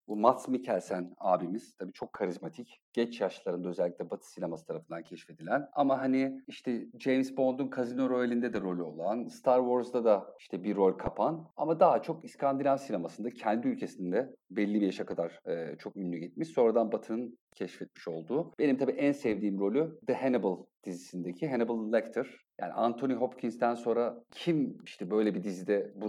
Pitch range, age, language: 105-145 Hz, 40-59, Turkish